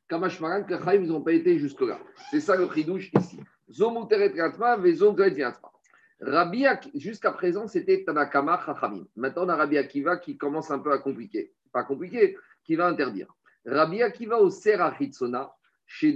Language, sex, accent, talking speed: French, male, French, 135 wpm